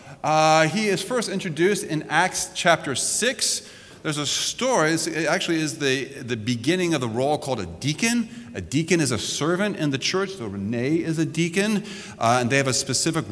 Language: English